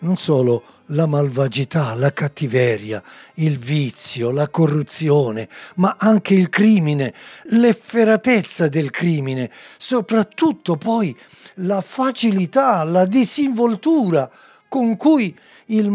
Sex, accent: male, native